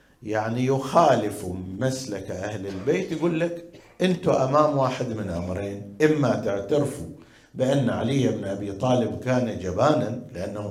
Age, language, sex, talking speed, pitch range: 50-69, Arabic, male, 125 wpm, 105-140 Hz